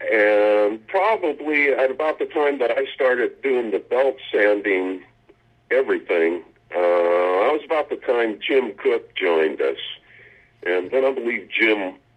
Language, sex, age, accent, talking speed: English, male, 50-69, American, 145 wpm